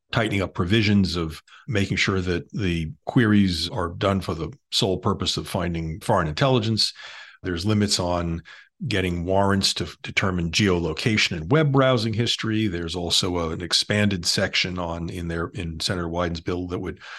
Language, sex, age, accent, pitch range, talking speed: English, male, 50-69, American, 90-110 Hz, 155 wpm